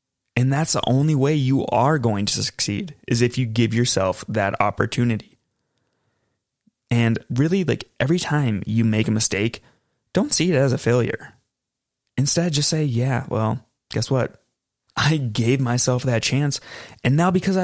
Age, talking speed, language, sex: 20-39, 160 wpm, English, male